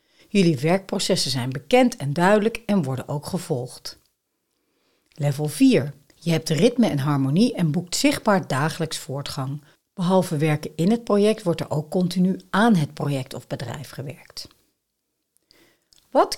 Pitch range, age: 145-200 Hz, 60-79